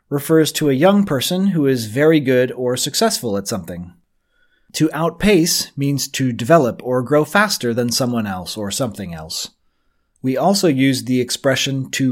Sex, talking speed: male, 165 wpm